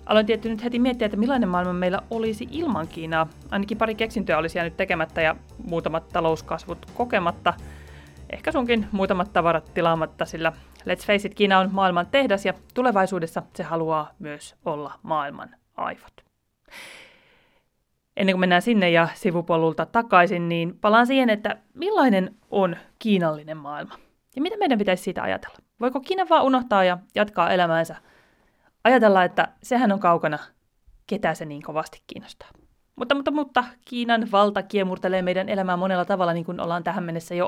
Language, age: Finnish, 30-49